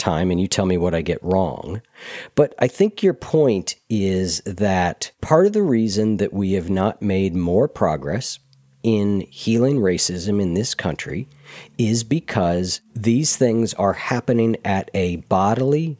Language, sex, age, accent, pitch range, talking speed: English, male, 40-59, American, 95-135 Hz, 160 wpm